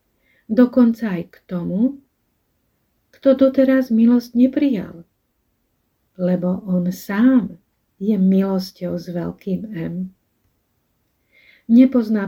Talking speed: 85 wpm